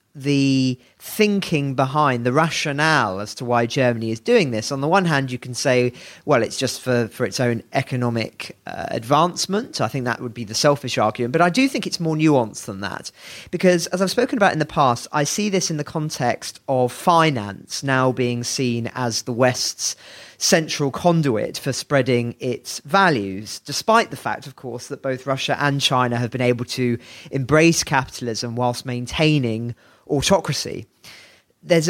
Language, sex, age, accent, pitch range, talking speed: English, male, 40-59, British, 120-150 Hz, 175 wpm